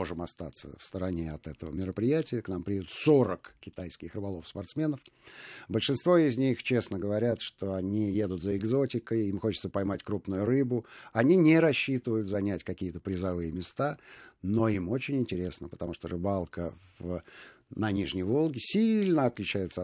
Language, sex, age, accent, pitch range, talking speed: Russian, male, 50-69, native, 95-120 Hz, 145 wpm